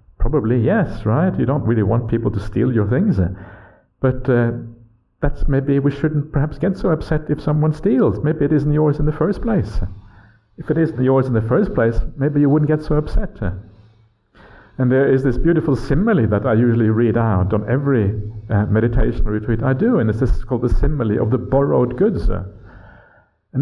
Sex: male